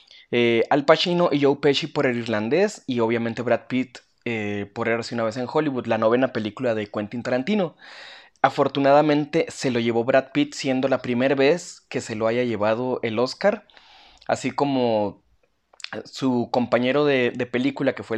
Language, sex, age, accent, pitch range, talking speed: Spanish, male, 20-39, Mexican, 115-145 Hz, 170 wpm